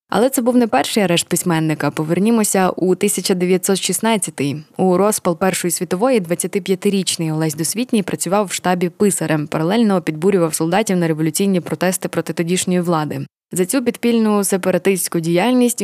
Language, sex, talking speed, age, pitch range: Ukrainian, female, 135 wpm, 20-39, 170-200 Hz